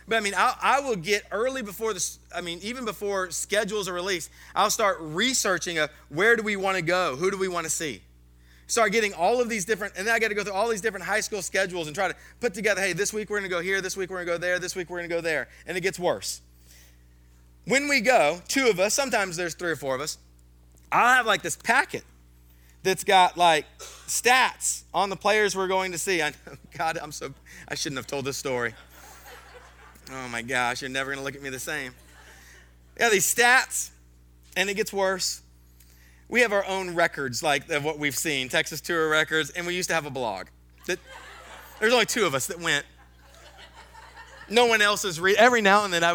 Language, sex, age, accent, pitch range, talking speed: English, male, 30-49, American, 140-205 Hz, 235 wpm